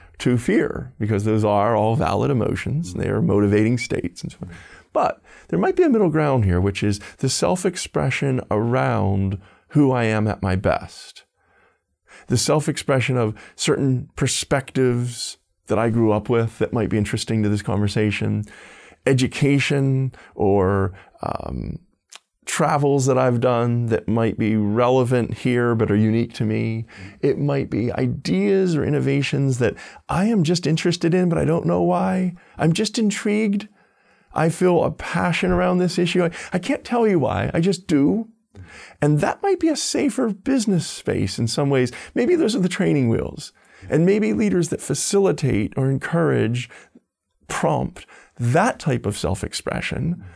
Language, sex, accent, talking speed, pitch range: English, male, American, 160 wpm, 110-170 Hz